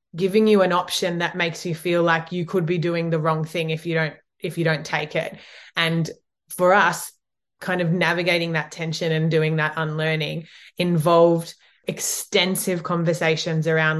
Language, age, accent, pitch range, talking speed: English, 20-39, Australian, 160-180 Hz, 170 wpm